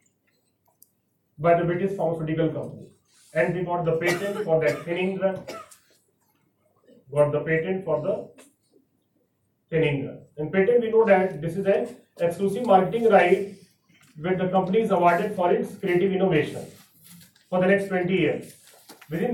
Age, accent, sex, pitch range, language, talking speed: 40-59, Indian, male, 160-200 Hz, English, 140 wpm